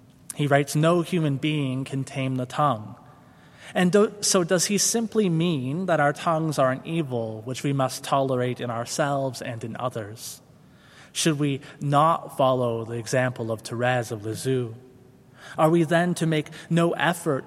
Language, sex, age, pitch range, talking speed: English, male, 20-39, 125-155 Hz, 160 wpm